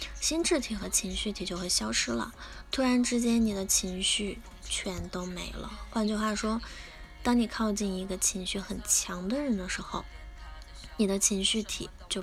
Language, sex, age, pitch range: Chinese, female, 10-29, 185-230 Hz